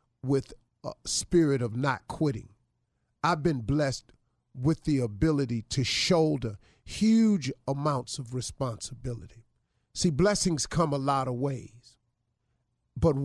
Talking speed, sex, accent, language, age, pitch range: 120 wpm, male, American, English, 50-69, 120-165 Hz